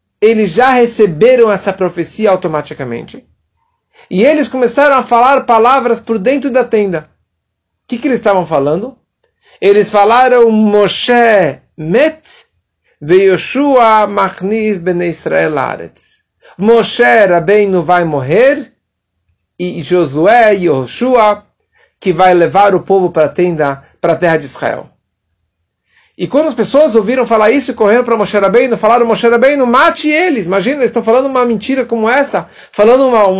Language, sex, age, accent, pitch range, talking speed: Portuguese, male, 50-69, Brazilian, 175-245 Hz, 135 wpm